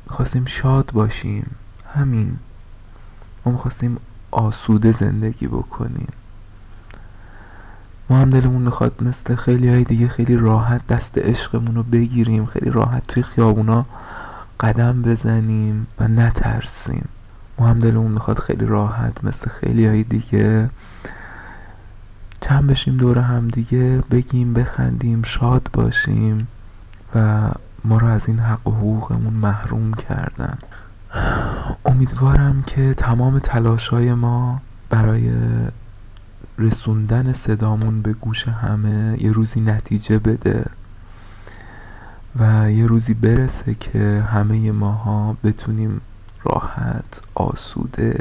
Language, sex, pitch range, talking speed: English, male, 105-120 Hz, 100 wpm